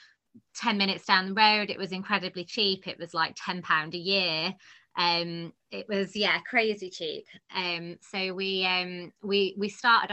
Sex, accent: female, British